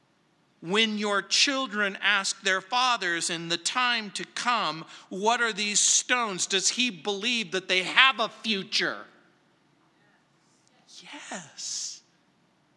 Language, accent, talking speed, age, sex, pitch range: English, American, 115 wpm, 50-69, male, 200-280 Hz